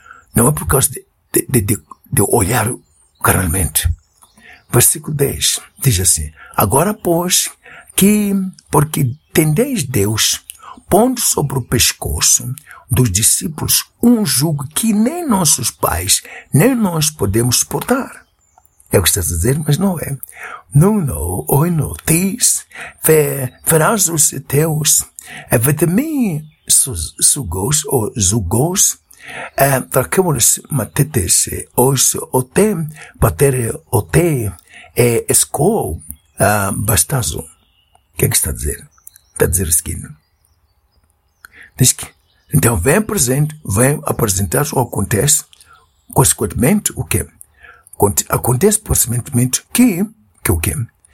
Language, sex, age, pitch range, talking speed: Portuguese, male, 60-79, 105-170 Hz, 130 wpm